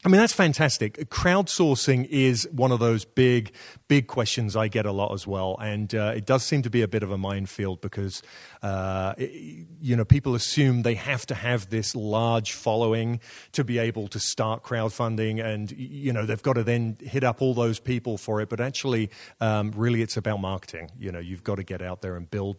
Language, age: English, 30-49